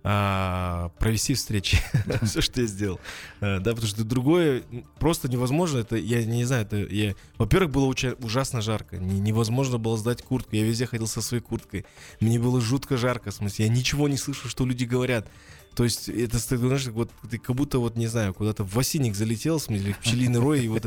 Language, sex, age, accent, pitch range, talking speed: Russian, male, 20-39, native, 105-135 Hz, 200 wpm